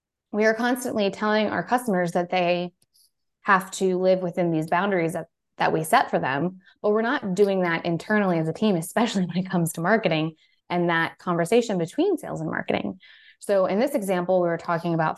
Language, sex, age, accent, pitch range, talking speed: English, female, 20-39, American, 165-205 Hz, 200 wpm